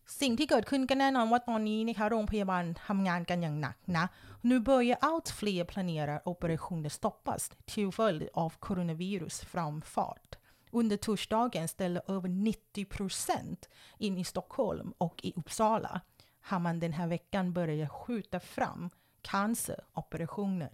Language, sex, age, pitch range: Thai, female, 30-49, 170-215 Hz